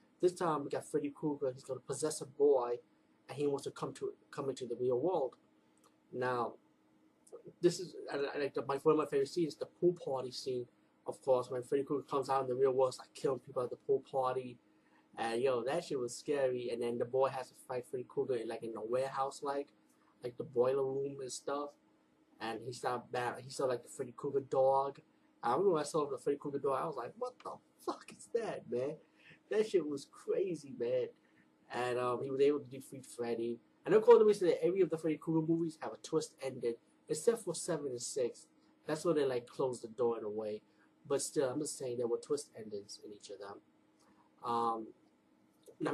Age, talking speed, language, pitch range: 20-39, 220 wpm, English, 130-185 Hz